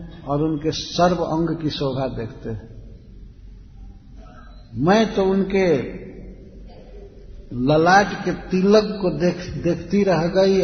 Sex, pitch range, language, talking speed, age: male, 140-185 Hz, Hindi, 105 wpm, 60-79